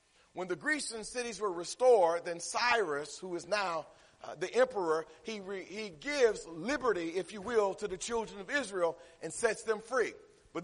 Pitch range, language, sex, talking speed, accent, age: 205-285 Hz, English, male, 180 wpm, American, 40-59